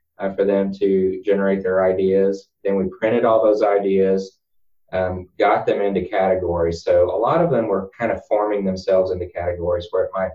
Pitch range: 95-110 Hz